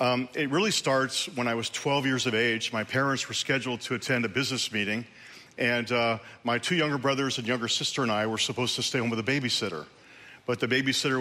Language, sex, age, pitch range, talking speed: English, male, 40-59, 115-130 Hz, 225 wpm